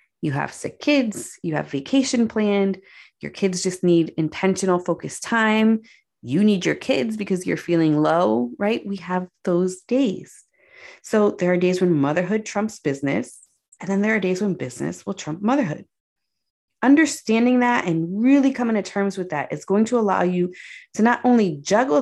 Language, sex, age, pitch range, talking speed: English, female, 30-49, 165-215 Hz, 175 wpm